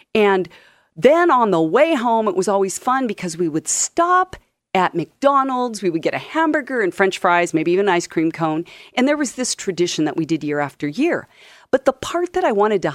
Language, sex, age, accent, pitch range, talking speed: English, female, 40-59, American, 170-250 Hz, 220 wpm